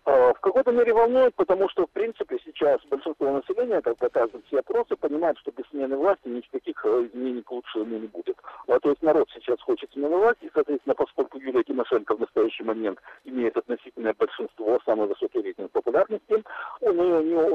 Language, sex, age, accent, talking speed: Russian, male, 50-69, native, 175 wpm